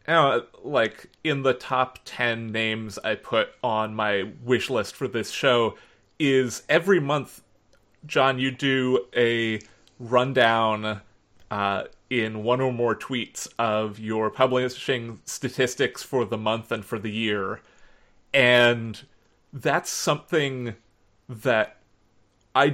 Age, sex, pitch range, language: 30-49, male, 110-130 Hz, English